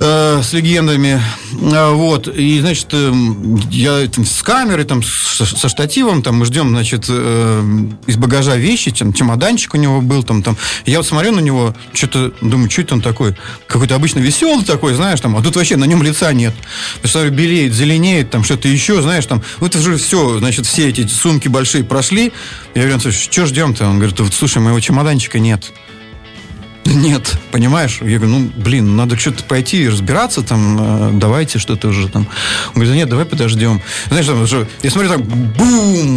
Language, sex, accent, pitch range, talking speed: Russian, male, native, 115-155 Hz, 175 wpm